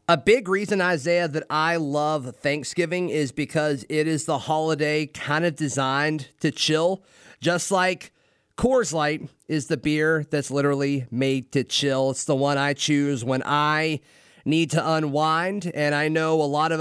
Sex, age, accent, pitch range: male, 30-49, American, 140-180 Hz